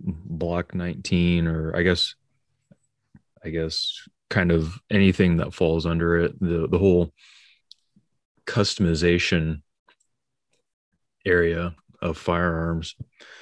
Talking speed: 95 wpm